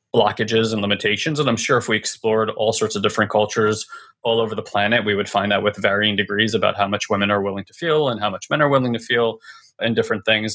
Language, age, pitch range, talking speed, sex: English, 20-39, 105-115 Hz, 250 wpm, male